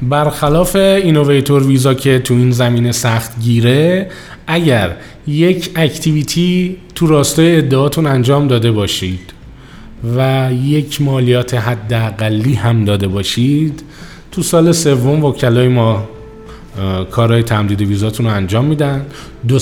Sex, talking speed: male, 115 wpm